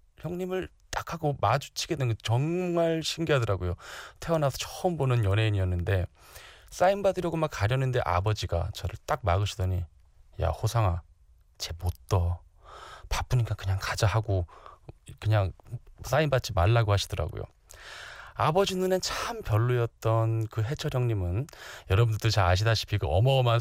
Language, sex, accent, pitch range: Korean, male, native, 95-130 Hz